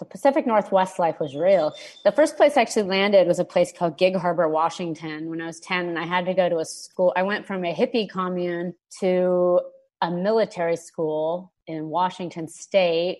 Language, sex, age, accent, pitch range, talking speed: English, female, 30-49, American, 170-205 Hz, 195 wpm